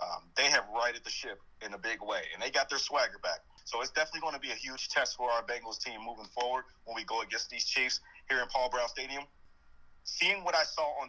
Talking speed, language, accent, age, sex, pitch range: 255 wpm, English, American, 30-49, male, 125-155 Hz